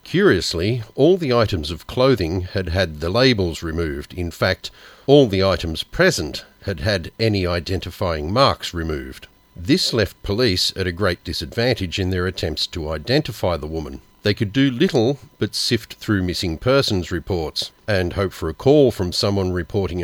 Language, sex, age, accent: English, male, 40-59, Australian